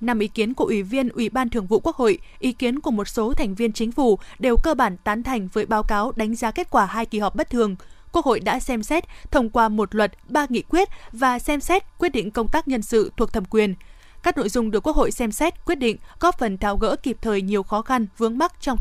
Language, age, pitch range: Vietnamese, 20-39, 220-270 Hz